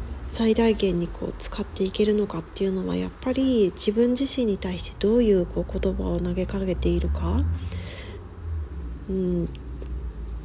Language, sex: Japanese, female